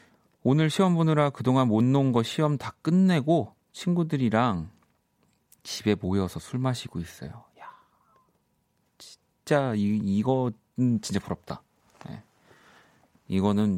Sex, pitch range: male, 95-135 Hz